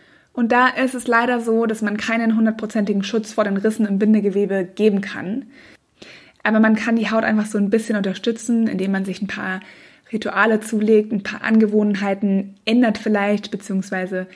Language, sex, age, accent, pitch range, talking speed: German, female, 20-39, German, 200-220 Hz, 170 wpm